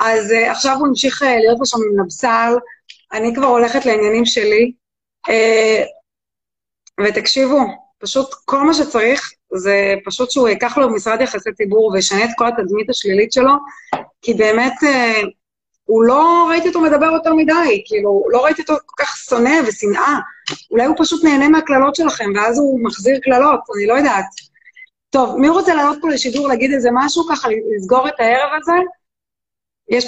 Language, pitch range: Hebrew, 225-290 Hz